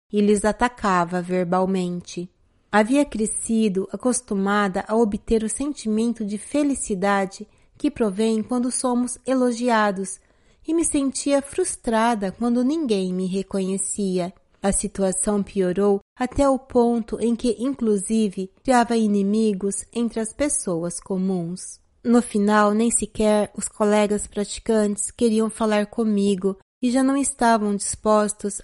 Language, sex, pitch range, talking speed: Portuguese, female, 200-245 Hz, 115 wpm